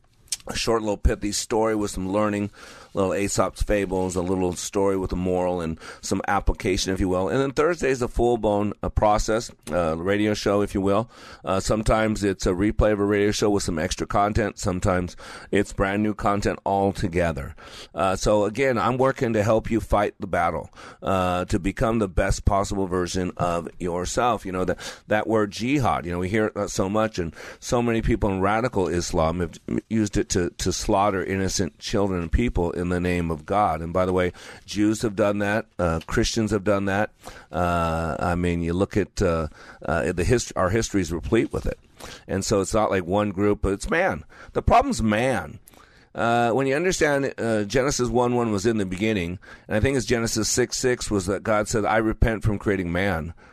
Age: 40-59